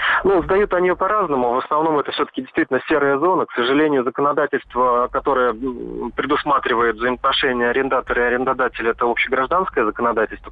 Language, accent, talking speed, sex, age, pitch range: Russian, native, 130 wpm, male, 30-49, 120-150 Hz